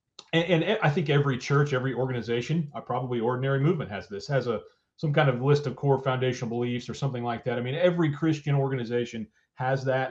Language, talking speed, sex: English, 210 wpm, male